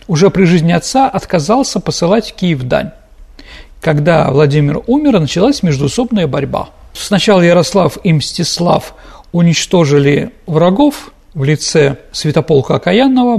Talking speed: 110 wpm